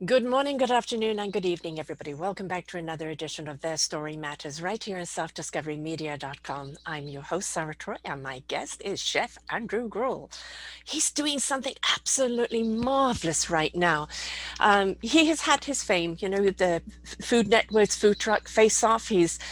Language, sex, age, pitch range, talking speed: English, female, 50-69, 180-235 Hz, 170 wpm